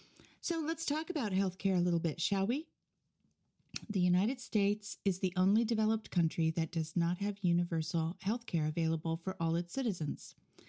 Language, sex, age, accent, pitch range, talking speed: English, female, 40-59, American, 160-210 Hz, 165 wpm